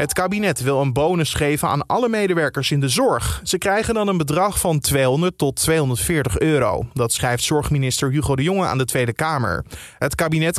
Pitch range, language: 130-170 Hz, Dutch